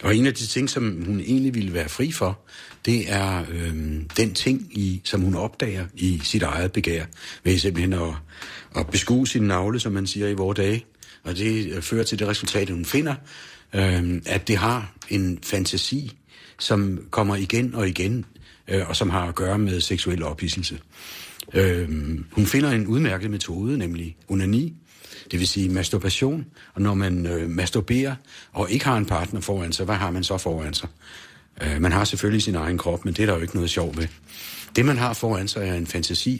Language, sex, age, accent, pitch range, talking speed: Danish, male, 60-79, native, 90-110 Hz, 195 wpm